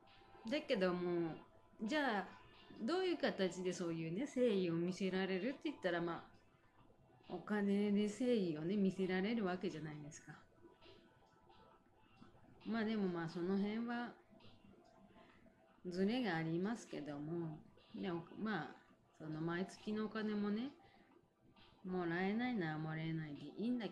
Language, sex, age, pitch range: Japanese, female, 30-49, 155-210 Hz